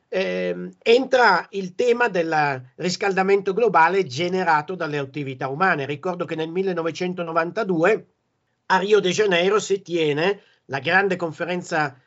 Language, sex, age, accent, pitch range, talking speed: Italian, male, 50-69, native, 145-190 Hz, 120 wpm